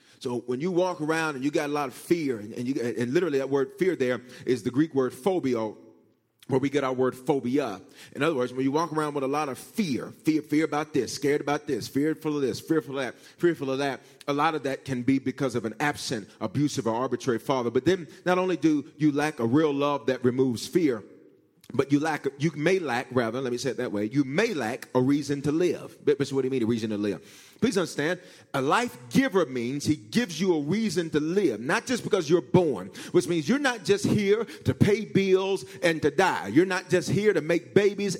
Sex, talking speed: male, 240 wpm